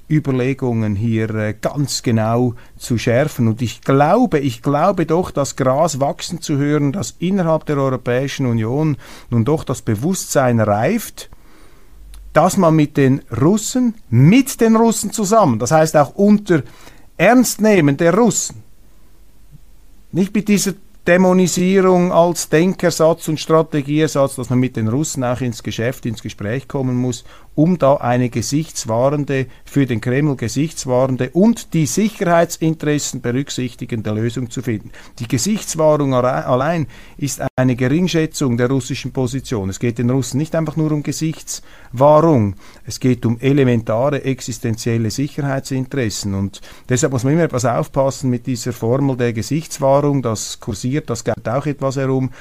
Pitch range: 120-155 Hz